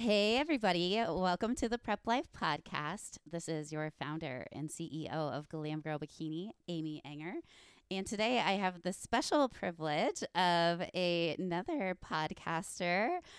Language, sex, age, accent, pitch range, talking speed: English, female, 20-39, American, 155-200 Hz, 135 wpm